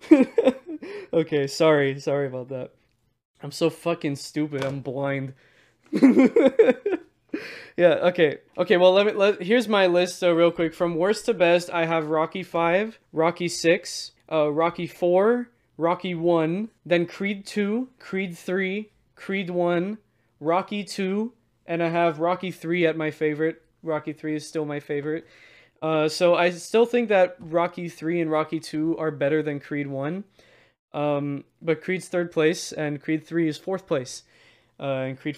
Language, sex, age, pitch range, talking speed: English, male, 20-39, 150-195 Hz, 160 wpm